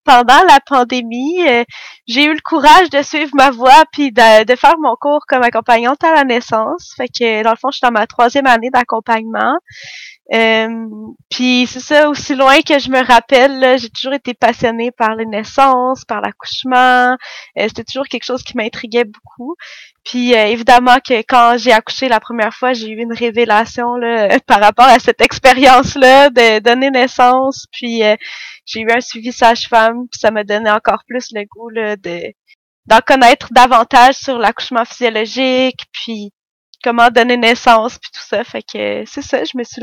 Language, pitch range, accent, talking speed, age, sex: French, 230-265 Hz, Canadian, 185 wpm, 20-39, female